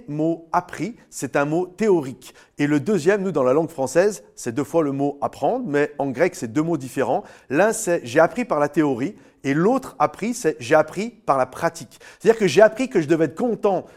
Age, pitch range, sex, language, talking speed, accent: 40-59, 140-190 Hz, male, French, 225 wpm, French